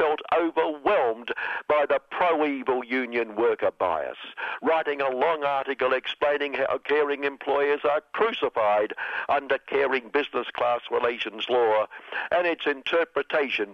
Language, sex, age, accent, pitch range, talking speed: English, male, 60-79, British, 125-170 Hz, 120 wpm